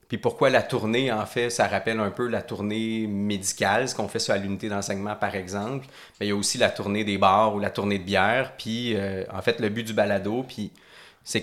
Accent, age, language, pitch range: Canadian, 30-49, French, 100-125 Hz